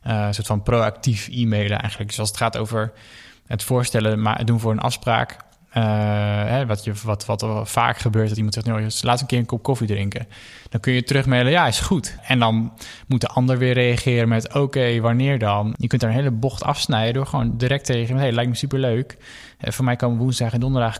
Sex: male